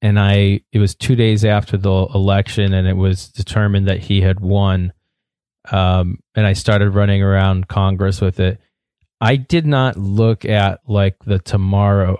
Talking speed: 165 wpm